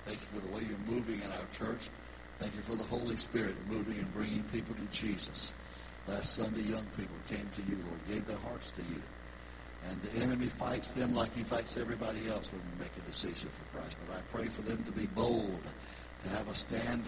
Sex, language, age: male, English, 60-79